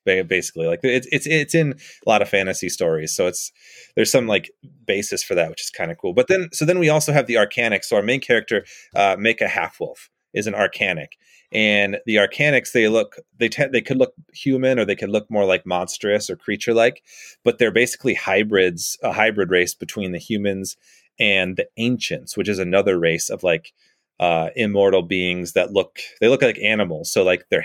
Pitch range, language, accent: 90-120 Hz, English, American